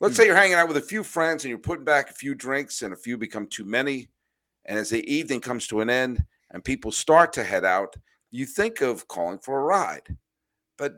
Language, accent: English, American